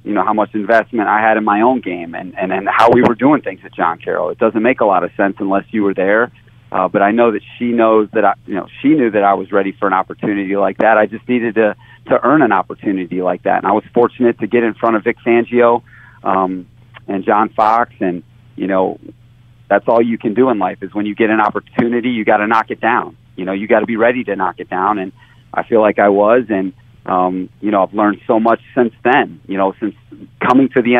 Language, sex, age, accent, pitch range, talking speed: English, male, 30-49, American, 100-120 Hz, 260 wpm